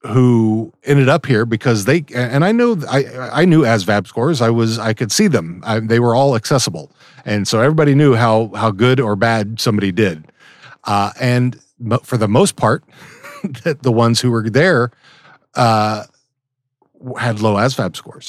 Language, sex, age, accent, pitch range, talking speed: English, male, 40-59, American, 110-135 Hz, 175 wpm